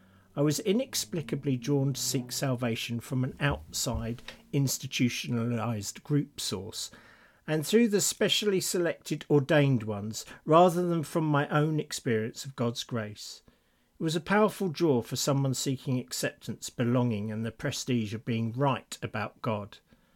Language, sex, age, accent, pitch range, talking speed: English, male, 50-69, British, 120-160 Hz, 140 wpm